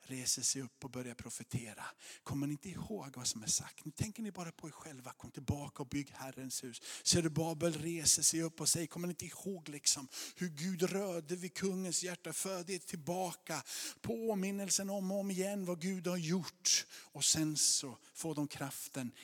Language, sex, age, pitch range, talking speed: Swedish, male, 50-69, 140-175 Hz, 200 wpm